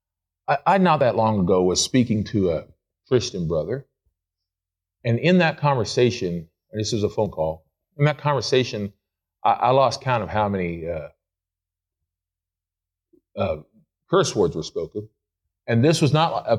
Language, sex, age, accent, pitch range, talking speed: English, male, 40-59, American, 90-145 Hz, 150 wpm